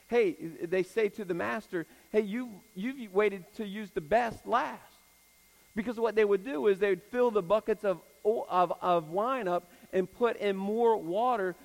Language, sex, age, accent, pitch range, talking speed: English, male, 50-69, American, 180-230 Hz, 185 wpm